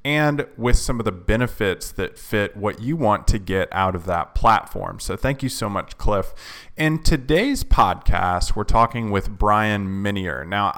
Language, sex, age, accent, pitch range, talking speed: English, male, 20-39, American, 100-130 Hz, 180 wpm